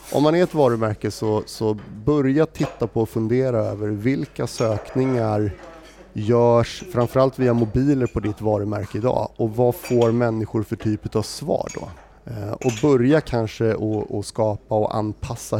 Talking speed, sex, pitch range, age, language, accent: 155 wpm, male, 105-120 Hz, 30-49, Swedish, native